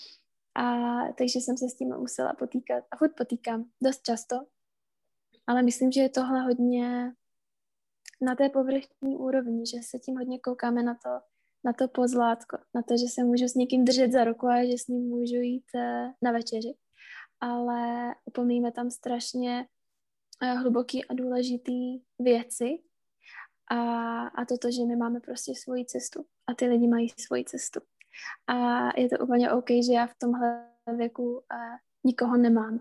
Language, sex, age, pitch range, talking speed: Czech, female, 20-39, 235-250 Hz, 160 wpm